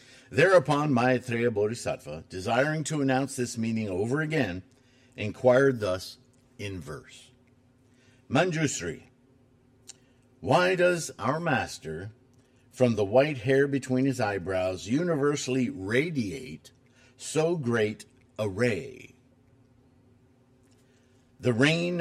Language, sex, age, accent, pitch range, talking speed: English, male, 50-69, American, 120-130 Hz, 95 wpm